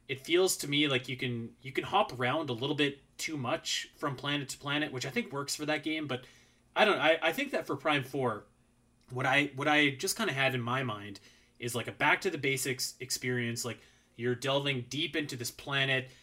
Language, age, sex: English, 30-49, male